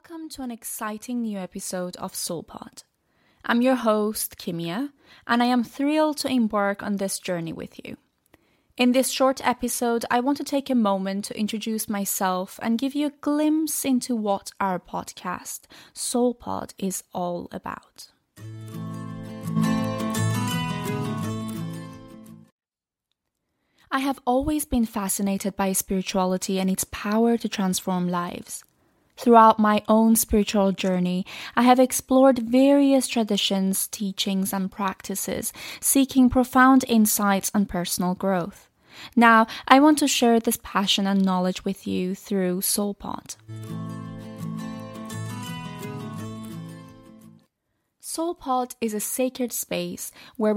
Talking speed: 120 wpm